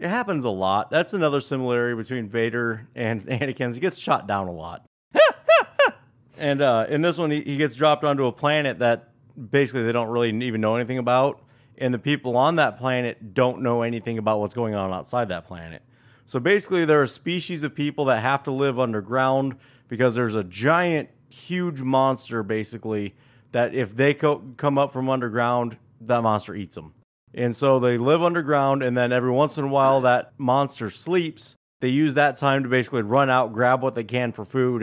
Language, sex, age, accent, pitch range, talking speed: English, male, 30-49, American, 115-140 Hz, 195 wpm